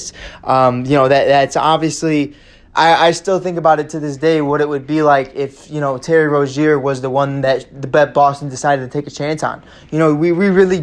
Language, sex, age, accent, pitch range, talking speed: English, male, 20-39, American, 140-155 Hz, 240 wpm